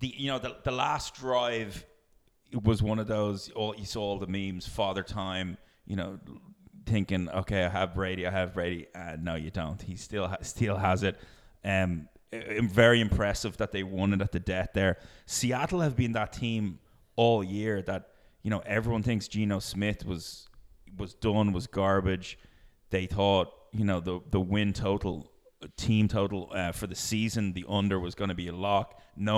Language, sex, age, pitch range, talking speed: English, male, 30-49, 95-115 Hz, 190 wpm